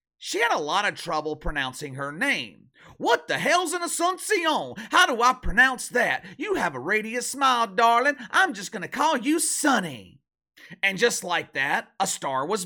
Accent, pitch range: American, 145-230 Hz